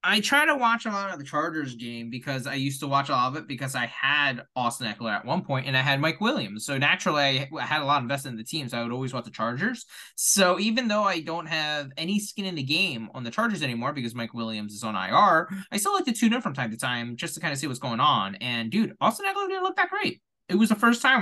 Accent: American